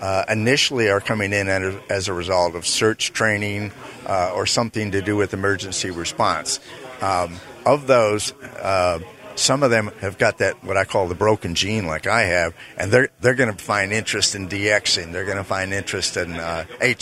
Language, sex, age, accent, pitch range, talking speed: English, male, 50-69, American, 90-115 Hz, 190 wpm